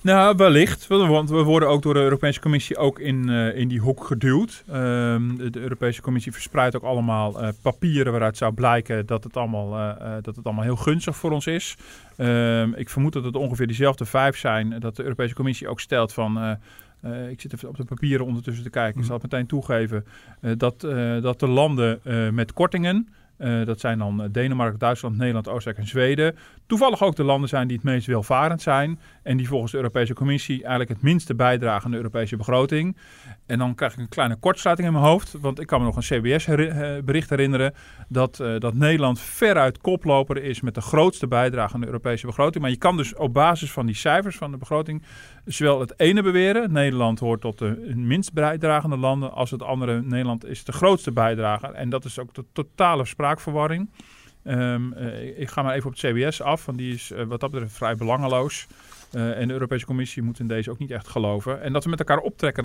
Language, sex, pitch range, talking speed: Dutch, male, 120-145 Hz, 215 wpm